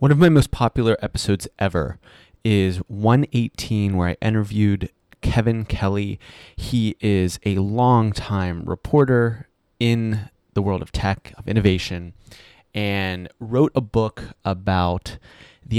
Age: 30-49